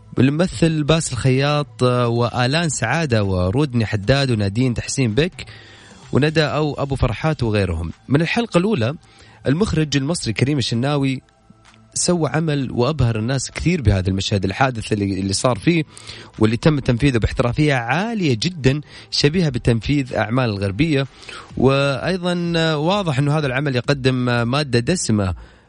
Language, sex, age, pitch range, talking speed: Arabic, male, 30-49, 110-145 Hz, 120 wpm